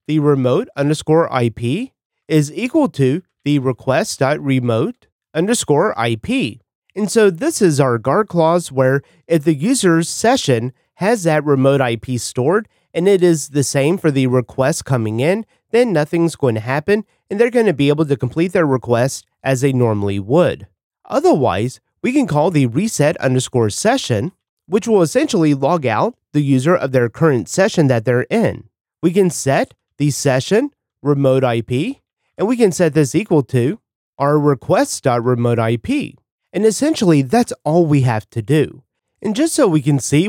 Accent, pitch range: American, 130-180 Hz